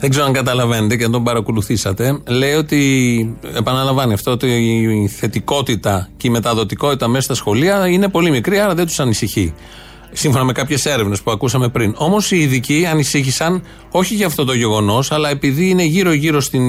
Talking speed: 175 wpm